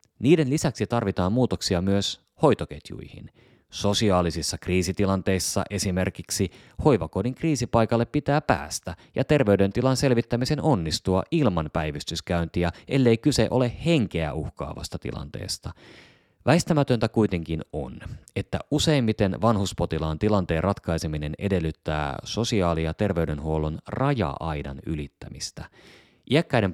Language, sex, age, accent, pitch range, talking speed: Finnish, male, 30-49, native, 80-115 Hz, 90 wpm